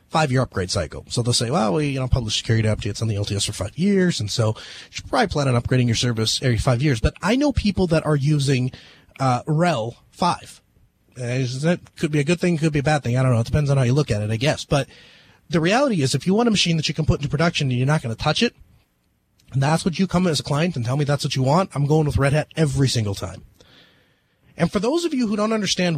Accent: American